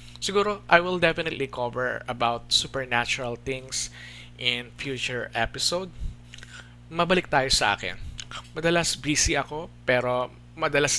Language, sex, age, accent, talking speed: Filipino, male, 20-39, native, 110 wpm